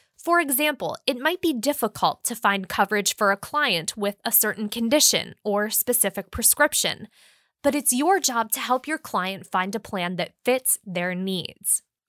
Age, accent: 20-39, American